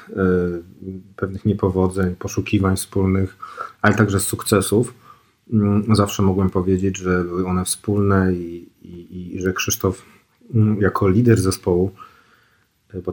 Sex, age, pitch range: male, 40-59, 90-100 Hz